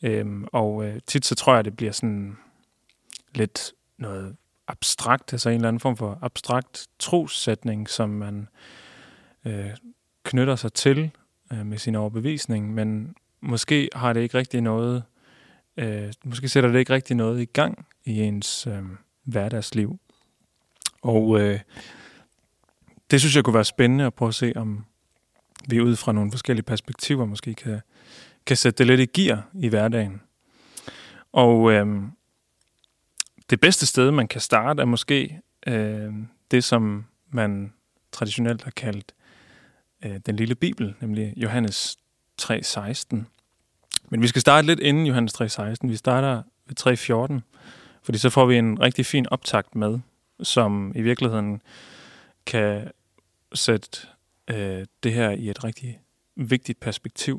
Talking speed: 135 wpm